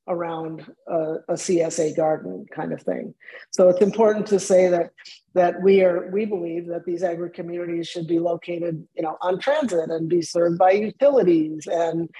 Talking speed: 170 wpm